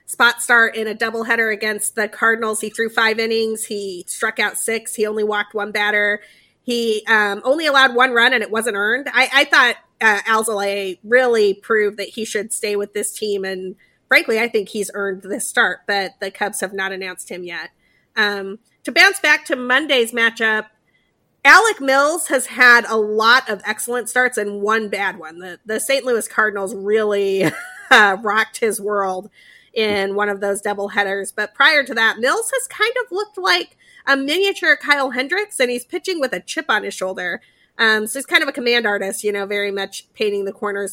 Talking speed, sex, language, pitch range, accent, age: 200 wpm, female, English, 205-260 Hz, American, 30-49